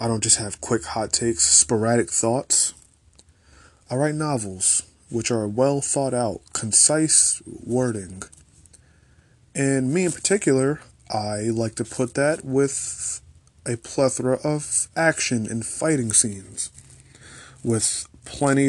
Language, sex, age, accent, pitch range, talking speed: English, male, 20-39, American, 100-130 Hz, 120 wpm